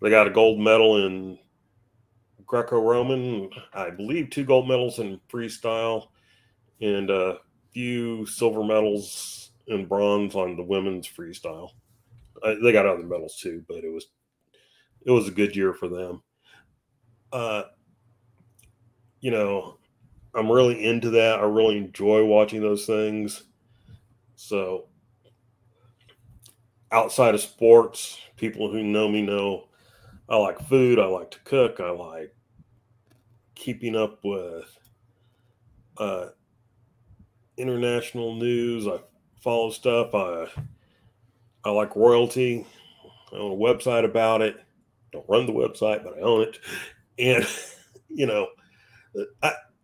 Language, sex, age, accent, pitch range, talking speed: English, male, 40-59, American, 105-120 Hz, 125 wpm